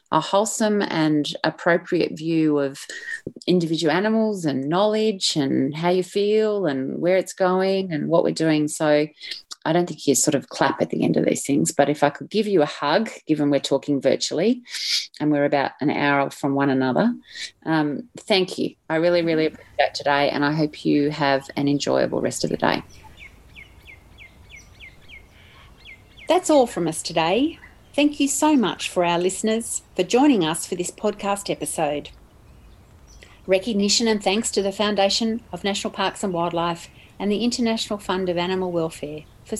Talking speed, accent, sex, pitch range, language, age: 175 wpm, Australian, female, 150-215 Hz, English, 30-49